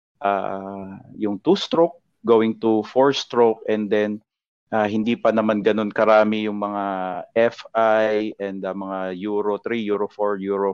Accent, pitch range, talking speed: Filipino, 100-110 Hz, 140 wpm